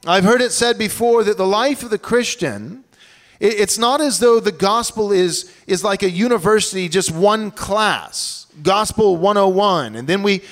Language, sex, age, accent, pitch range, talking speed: English, male, 40-59, American, 170-225 Hz, 170 wpm